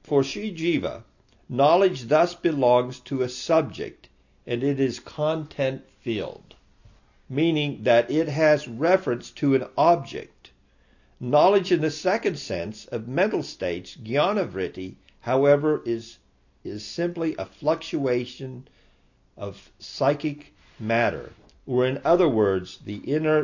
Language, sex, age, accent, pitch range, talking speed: English, male, 50-69, American, 110-150 Hz, 115 wpm